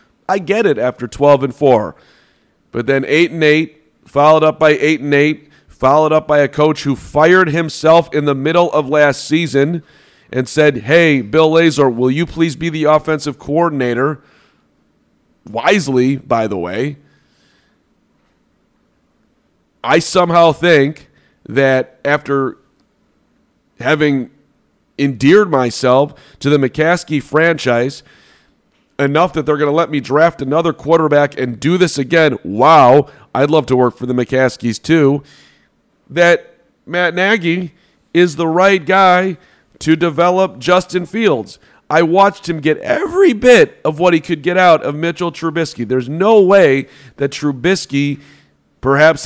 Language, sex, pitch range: English, male, 140-170 Hz